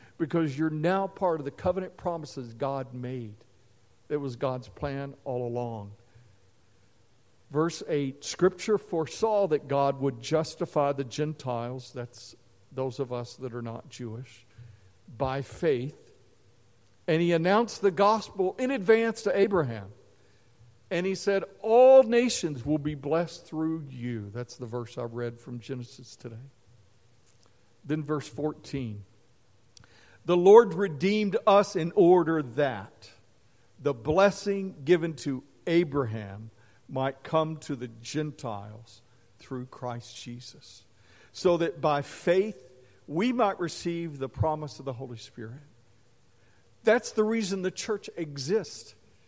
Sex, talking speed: male, 130 wpm